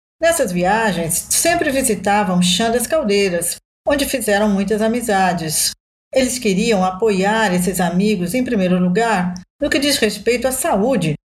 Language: Portuguese